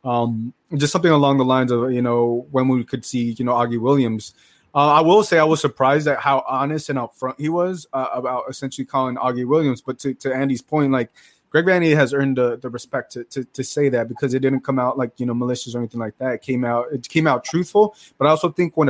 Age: 20-39